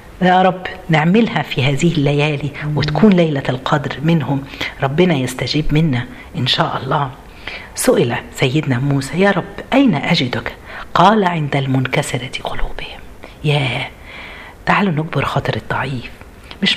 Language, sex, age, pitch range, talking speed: Arabic, female, 50-69, 140-185 Hz, 120 wpm